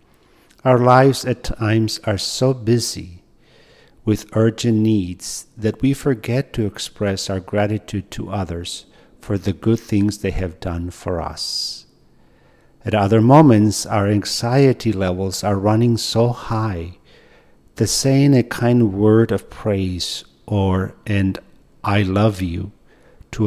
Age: 50-69